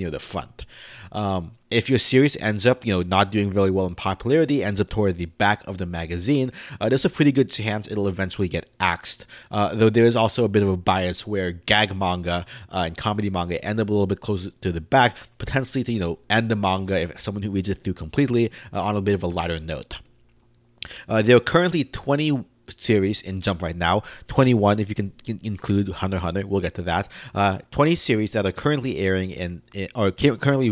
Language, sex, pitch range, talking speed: English, male, 95-120 Hz, 225 wpm